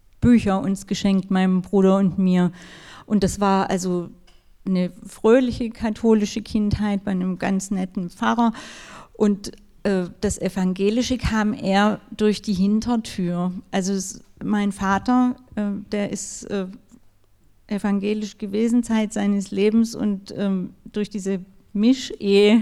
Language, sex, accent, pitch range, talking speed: German, female, German, 195-220 Hz, 120 wpm